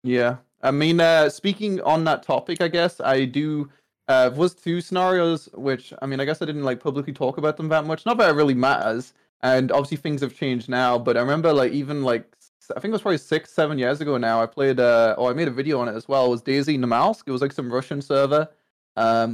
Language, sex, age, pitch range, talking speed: English, male, 20-39, 125-170 Hz, 250 wpm